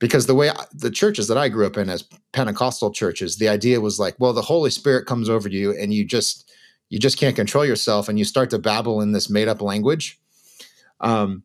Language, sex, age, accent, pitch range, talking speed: English, male, 30-49, American, 105-135 Hz, 215 wpm